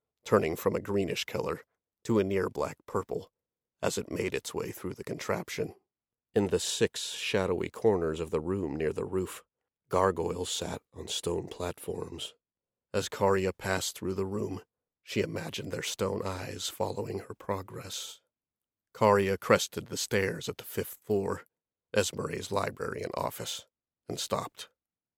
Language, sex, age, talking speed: English, male, 40-59, 145 wpm